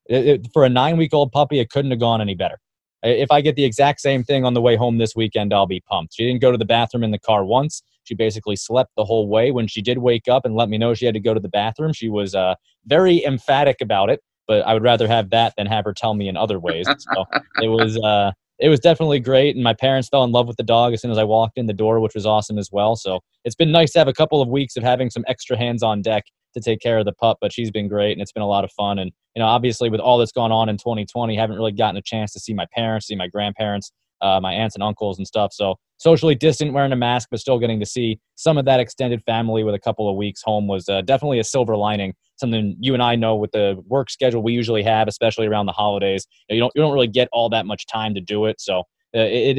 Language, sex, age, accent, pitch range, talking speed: English, male, 20-39, American, 105-125 Hz, 285 wpm